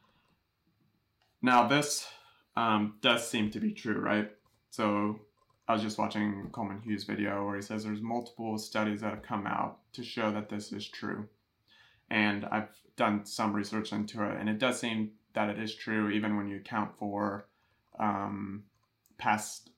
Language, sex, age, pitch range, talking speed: English, male, 20-39, 105-110 Hz, 165 wpm